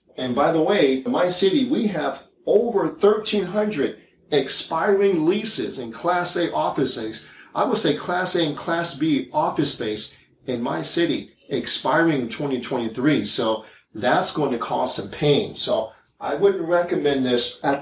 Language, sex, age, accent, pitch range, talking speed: English, male, 40-59, American, 125-185 Hz, 155 wpm